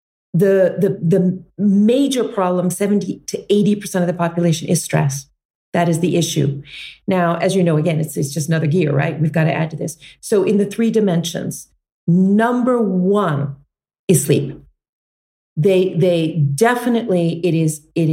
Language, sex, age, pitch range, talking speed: English, female, 40-59, 160-205 Hz, 160 wpm